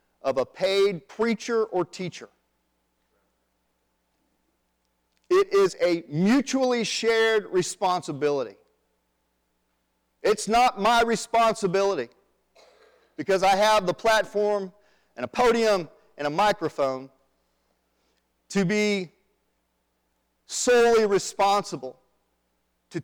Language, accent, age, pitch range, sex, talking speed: English, American, 40-59, 175-235 Hz, male, 85 wpm